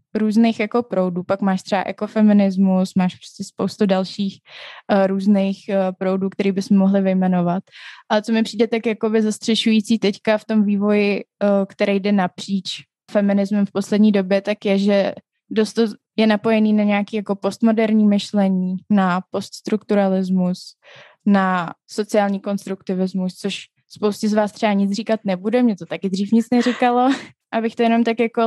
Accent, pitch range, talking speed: native, 195-220 Hz, 160 wpm